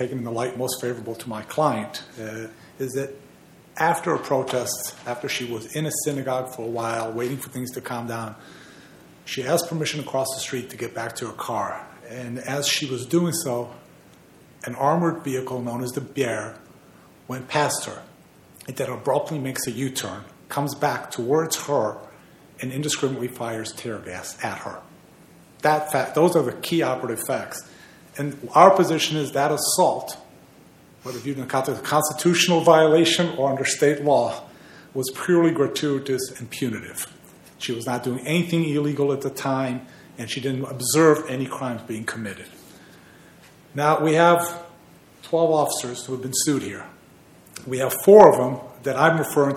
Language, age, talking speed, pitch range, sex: English, 40-59, 170 wpm, 125-150 Hz, male